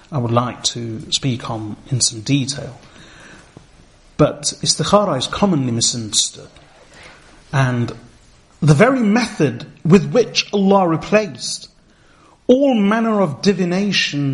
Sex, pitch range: male, 140-190 Hz